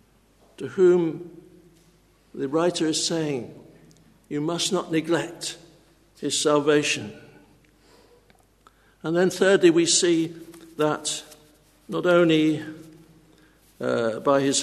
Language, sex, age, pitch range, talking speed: English, male, 60-79, 160-200 Hz, 95 wpm